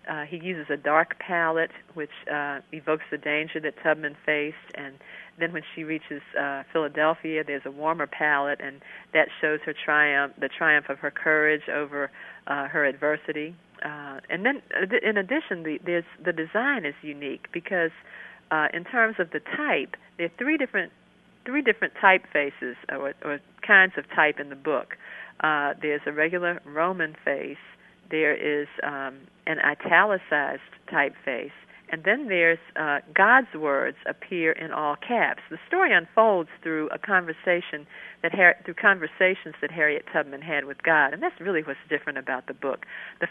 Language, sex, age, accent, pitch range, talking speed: English, female, 50-69, American, 150-175 Hz, 165 wpm